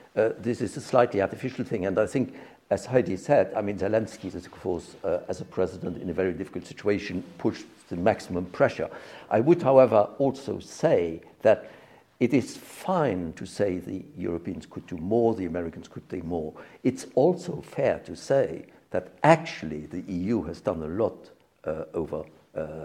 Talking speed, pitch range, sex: 180 wpm, 95-145 Hz, male